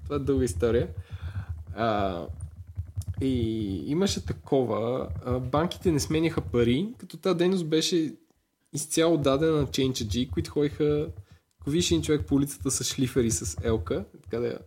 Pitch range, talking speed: 110-145 Hz, 140 wpm